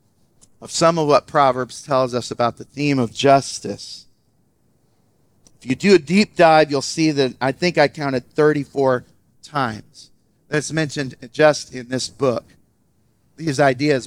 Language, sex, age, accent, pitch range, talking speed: English, male, 40-59, American, 130-160 Hz, 145 wpm